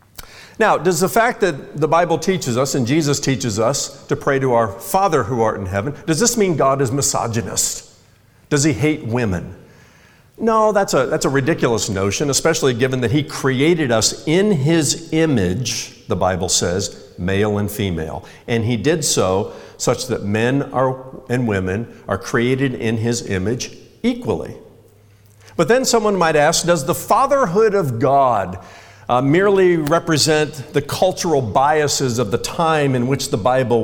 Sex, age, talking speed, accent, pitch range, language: male, 50-69, 160 wpm, American, 120-170 Hz, English